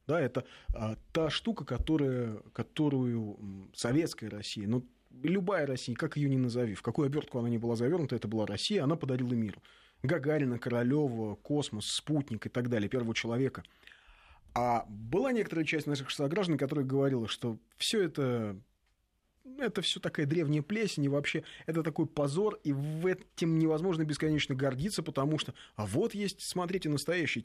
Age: 30-49